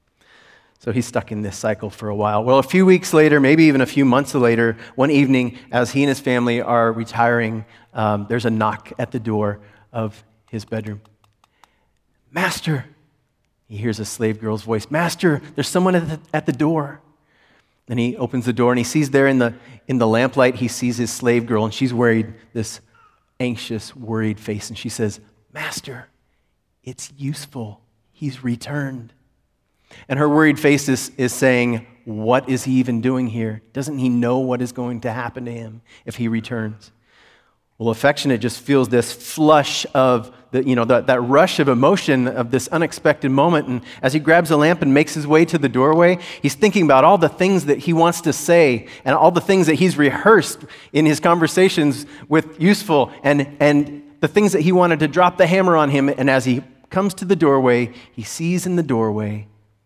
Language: English